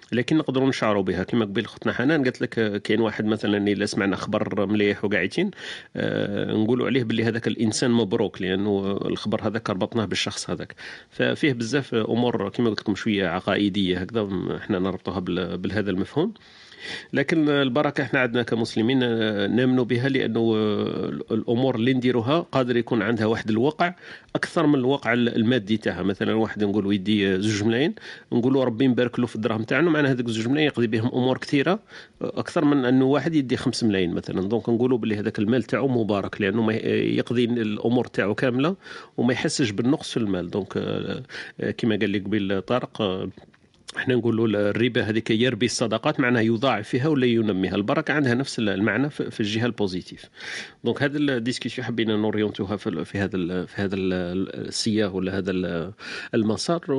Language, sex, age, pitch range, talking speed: Arabic, male, 40-59, 105-125 Hz, 155 wpm